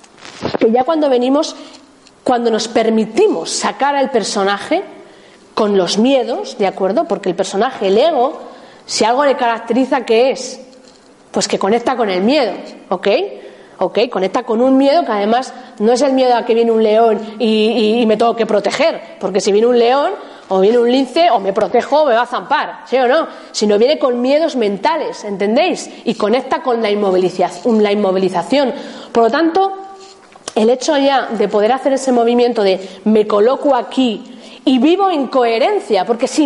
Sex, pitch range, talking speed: female, 215-285 Hz, 180 wpm